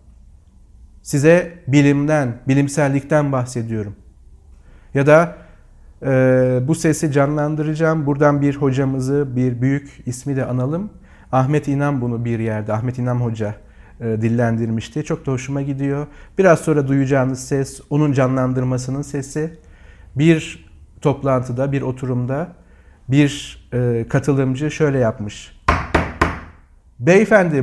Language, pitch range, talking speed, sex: Turkish, 110-155 Hz, 100 wpm, male